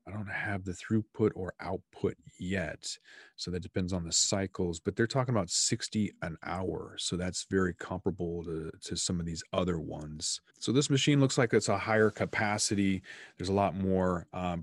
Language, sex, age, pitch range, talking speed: English, male, 30-49, 85-100 Hz, 190 wpm